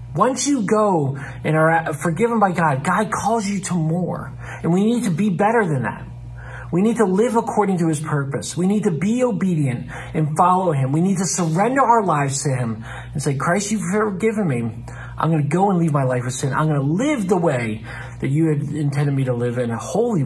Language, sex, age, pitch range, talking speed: English, male, 40-59, 125-180 Hz, 220 wpm